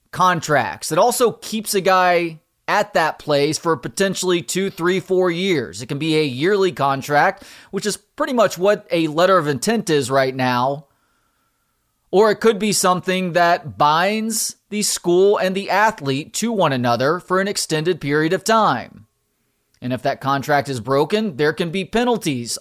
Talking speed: 170 wpm